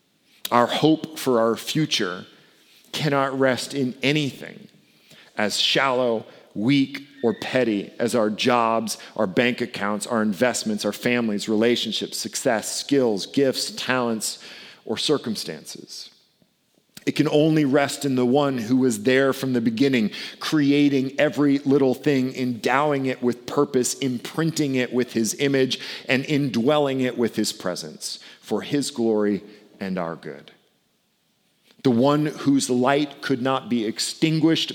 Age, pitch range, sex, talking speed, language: 40-59, 110-140 Hz, male, 135 wpm, English